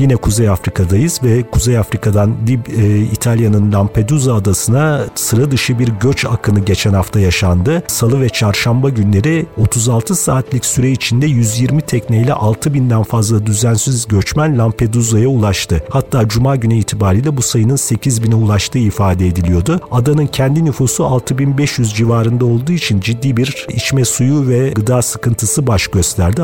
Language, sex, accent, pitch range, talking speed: Turkish, male, native, 110-130 Hz, 140 wpm